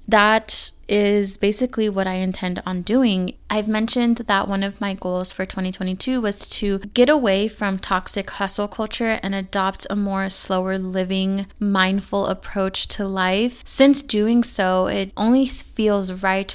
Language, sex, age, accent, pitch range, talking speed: English, female, 20-39, American, 190-215 Hz, 150 wpm